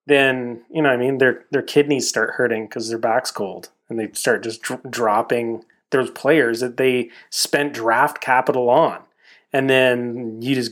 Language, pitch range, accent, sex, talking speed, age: English, 130-160 Hz, American, male, 185 wpm, 30-49